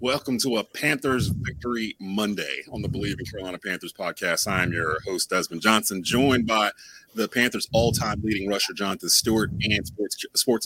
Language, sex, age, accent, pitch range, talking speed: English, male, 30-49, American, 100-120 Hz, 170 wpm